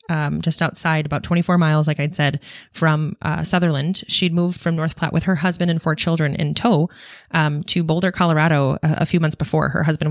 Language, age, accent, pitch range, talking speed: English, 20-39, American, 155-185 Hz, 215 wpm